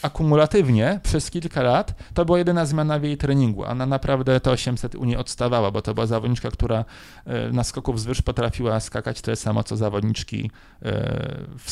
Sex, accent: male, native